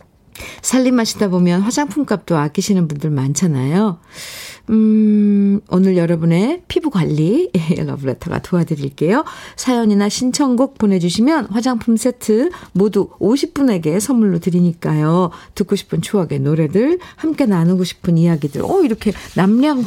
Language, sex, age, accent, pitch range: Korean, female, 50-69, native, 170-235 Hz